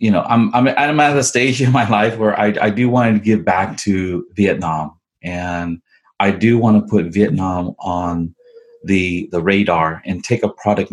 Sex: male